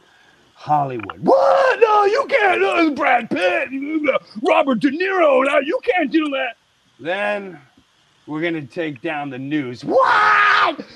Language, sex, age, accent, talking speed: English, male, 40-59, American, 140 wpm